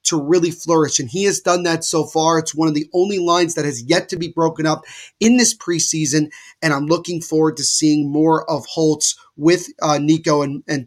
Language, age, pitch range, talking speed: English, 30-49, 155-200 Hz, 220 wpm